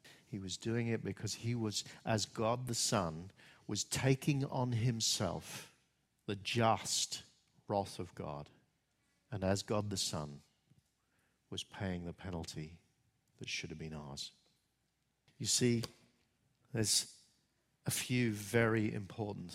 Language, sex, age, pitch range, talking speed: English, male, 50-69, 90-120 Hz, 125 wpm